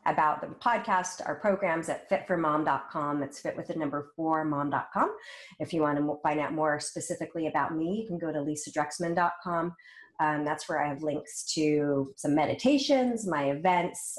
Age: 30-49